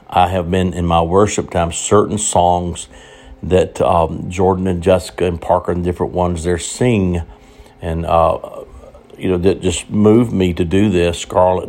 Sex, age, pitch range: male, 60-79, 85-95 Hz